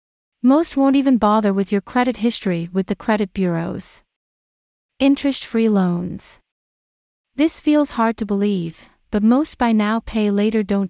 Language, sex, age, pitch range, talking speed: English, female, 30-49, 195-245 Hz, 145 wpm